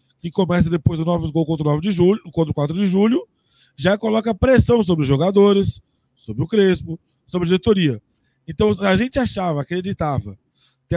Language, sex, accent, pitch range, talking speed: Portuguese, male, Brazilian, 145-215 Hz, 185 wpm